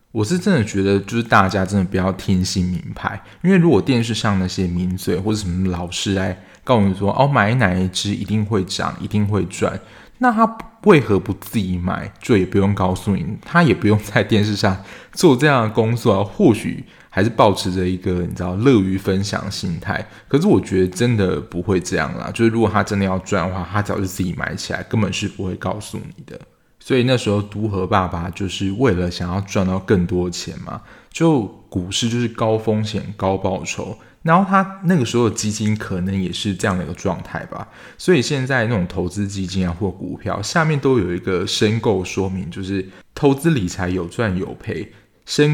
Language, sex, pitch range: Chinese, male, 95-115 Hz